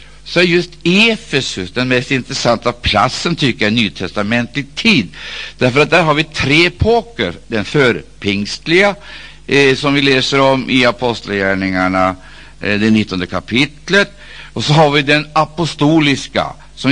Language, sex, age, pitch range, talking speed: Swedish, male, 60-79, 95-130 Hz, 140 wpm